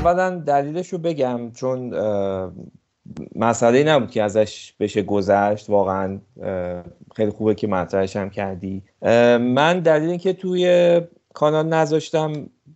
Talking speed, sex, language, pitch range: 110 wpm, male, Persian, 105-145 Hz